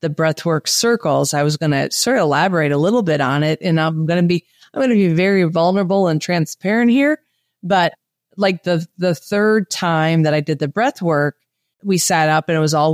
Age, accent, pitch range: 30-49, American, 160-200 Hz